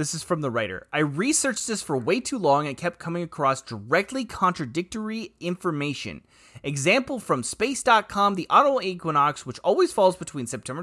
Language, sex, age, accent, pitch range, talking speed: English, male, 30-49, American, 140-215 Hz, 165 wpm